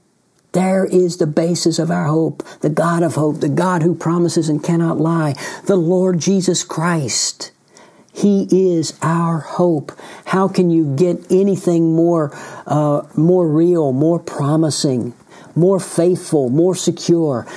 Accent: American